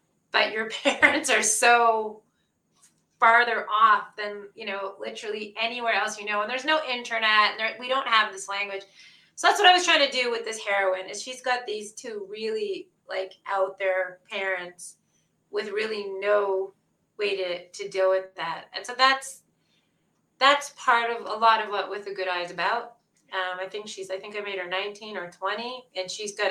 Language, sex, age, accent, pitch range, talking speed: English, female, 30-49, American, 185-220 Hz, 195 wpm